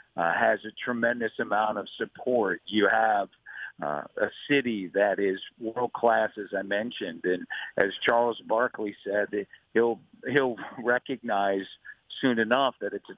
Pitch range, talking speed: 105-125 Hz, 150 wpm